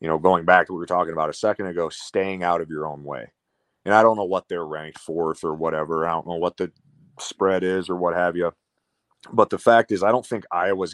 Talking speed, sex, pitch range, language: 265 wpm, male, 80-95 Hz, English